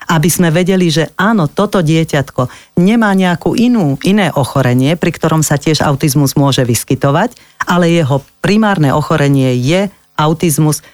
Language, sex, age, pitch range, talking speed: Slovak, female, 40-59, 140-180 Hz, 135 wpm